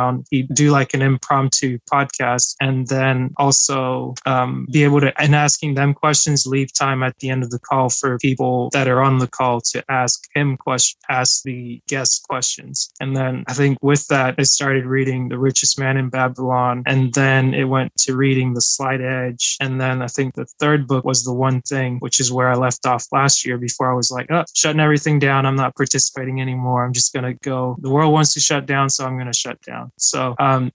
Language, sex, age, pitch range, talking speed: English, male, 20-39, 125-140 Hz, 220 wpm